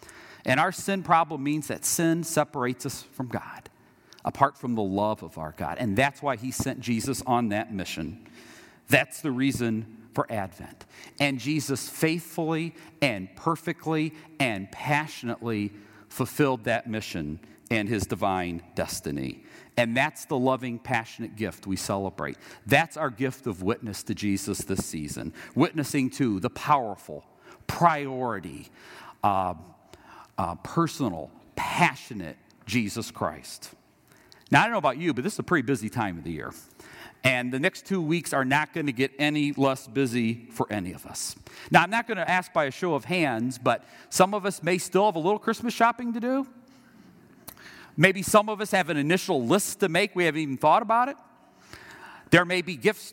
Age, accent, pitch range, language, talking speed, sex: 50-69, American, 115-185 Hz, English, 170 wpm, male